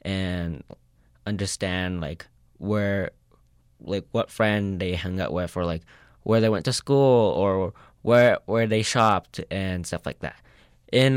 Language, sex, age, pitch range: English, male, 10-29, 90-115 Hz